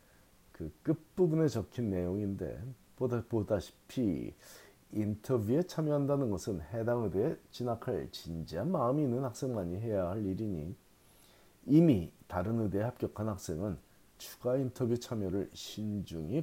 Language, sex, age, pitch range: Korean, male, 40-59, 90-130 Hz